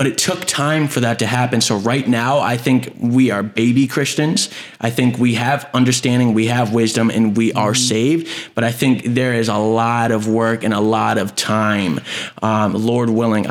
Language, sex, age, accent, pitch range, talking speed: English, male, 20-39, American, 105-120 Hz, 205 wpm